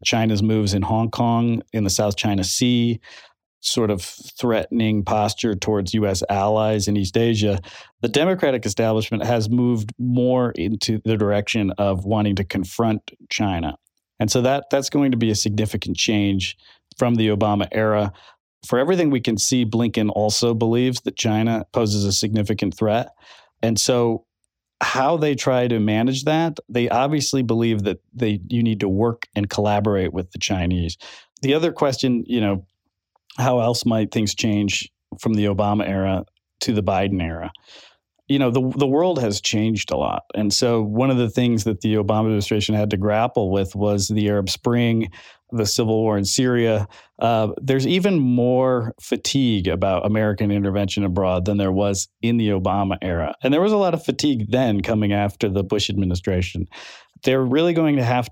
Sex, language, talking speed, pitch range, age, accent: male, English, 175 wpm, 100-120 Hz, 40-59, American